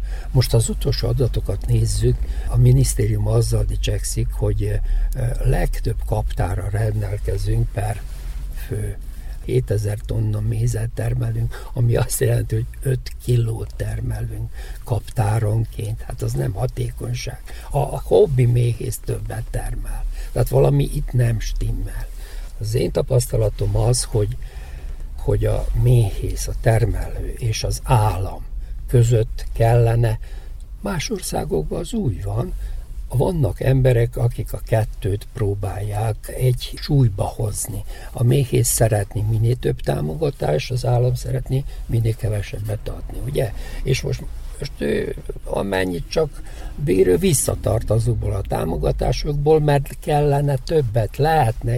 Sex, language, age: male, Hungarian, 60-79